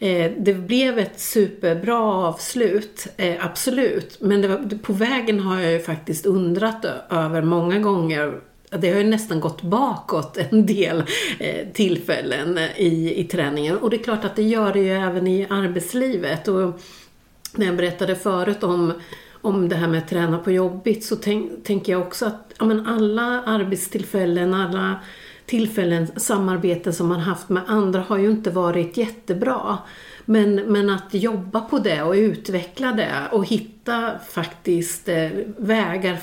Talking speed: 155 wpm